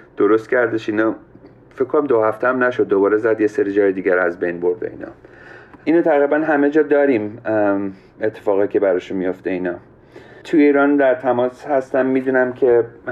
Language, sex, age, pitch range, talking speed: Persian, male, 40-59, 105-150 Hz, 165 wpm